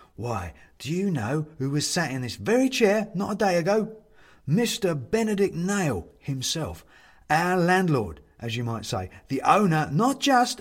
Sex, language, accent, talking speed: male, English, British, 165 wpm